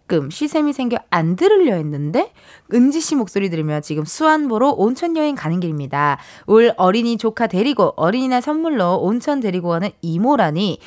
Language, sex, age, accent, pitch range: Korean, female, 20-39, native, 185-290 Hz